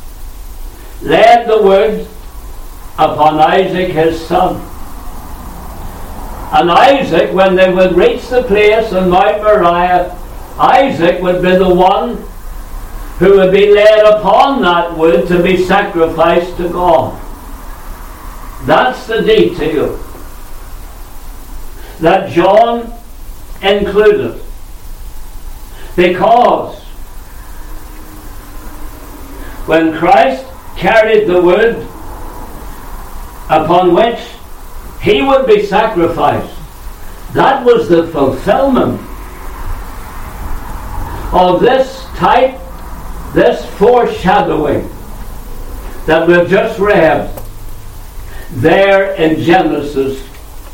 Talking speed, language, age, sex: 80 wpm, English, 60-79, male